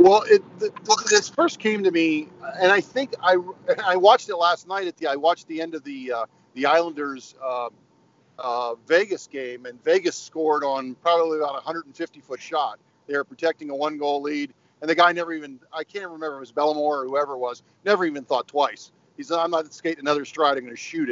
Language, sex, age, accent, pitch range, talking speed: English, male, 40-59, American, 145-200 Hz, 225 wpm